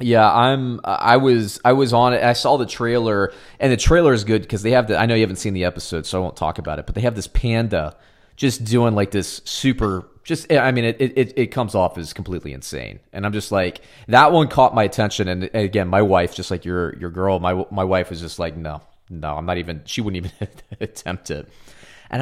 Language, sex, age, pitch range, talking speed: English, male, 30-49, 90-120 Hz, 245 wpm